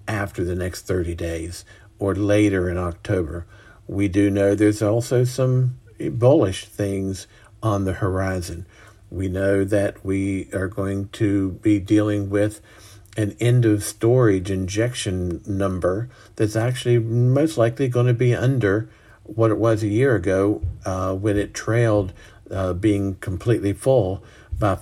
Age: 50-69